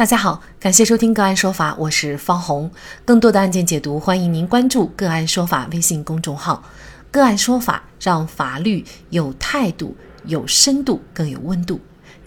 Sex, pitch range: female, 165-245 Hz